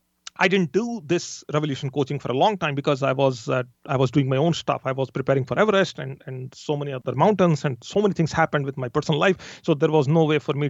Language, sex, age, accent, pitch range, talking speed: English, male, 40-59, Indian, 130-165 Hz, 265 wpm